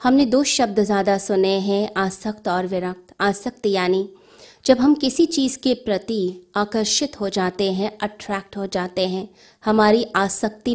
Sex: female